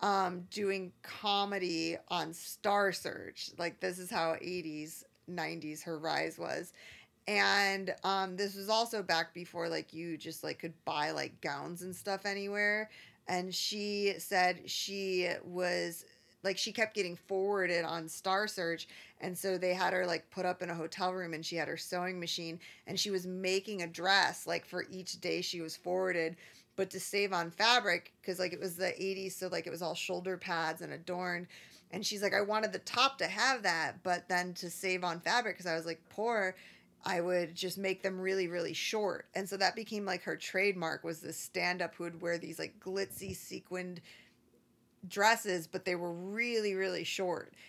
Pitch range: 170-195 Hz